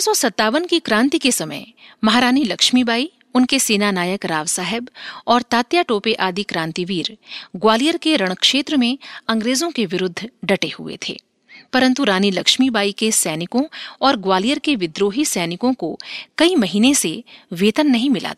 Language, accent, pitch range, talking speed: Hindi, native, 190-265 Hz, 140 wpm